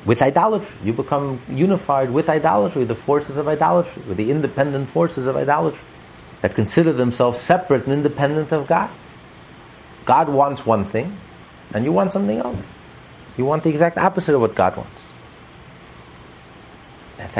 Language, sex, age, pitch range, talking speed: English, male, 40-59, 105-155 Hz, 150 wpm